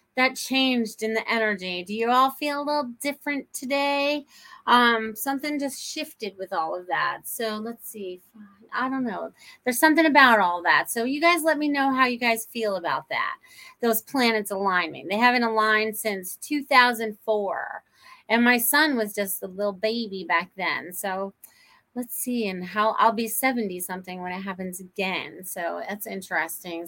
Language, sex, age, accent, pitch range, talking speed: English, female, 30-49, American, 205-255 Hz, 175 wpm